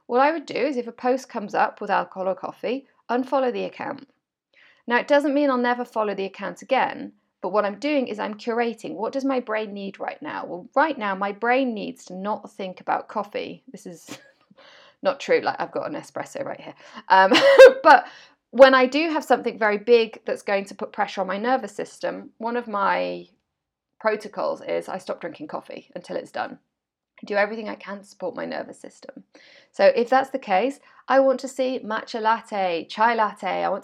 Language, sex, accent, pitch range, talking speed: English, female, British, 200-260 Hz, 205 wpm